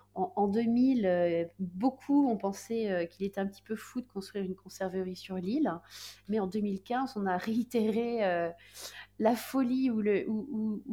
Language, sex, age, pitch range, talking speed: French, female, 30-49, 175-215 Hz, 155 wpm